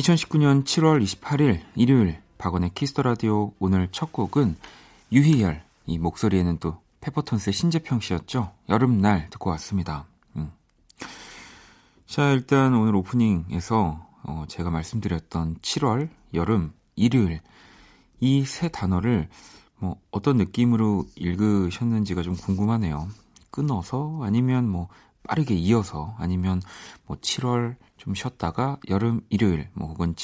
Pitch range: 90-125 Hz